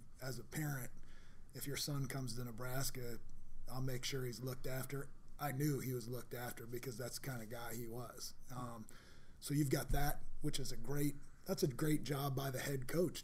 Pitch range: 125-145 Hz